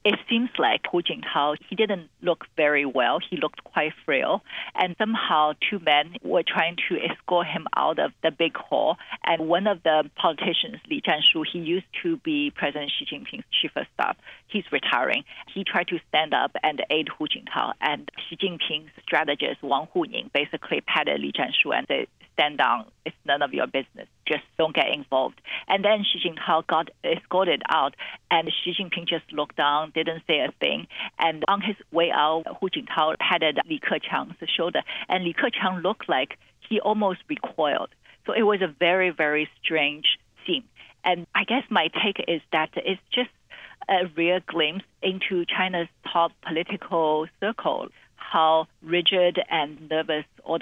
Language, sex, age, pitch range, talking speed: English, female, 50-69, 155-200 Hz, 170 wpm